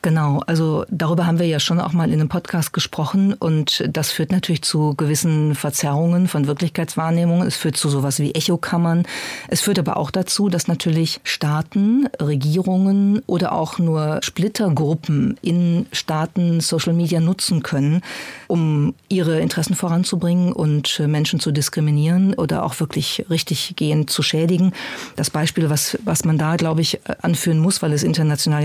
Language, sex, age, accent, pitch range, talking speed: German, female, 40-59, German, 155-175 Hz, 155 wpm